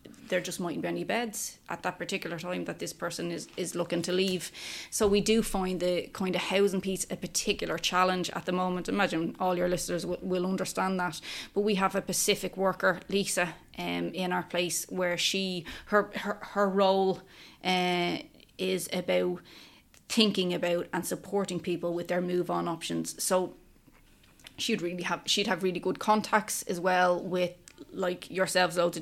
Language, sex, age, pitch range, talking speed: English, female, 20-39, 175-190 Hz, 180 wpm